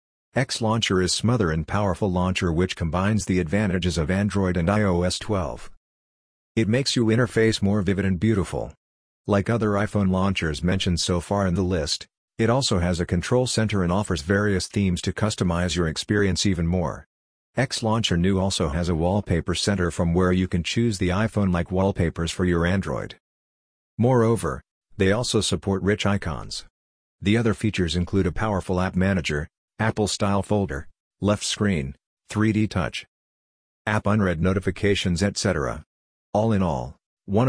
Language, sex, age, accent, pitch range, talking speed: English, male, 50-69, American, 90-105 Hz, 160 wpm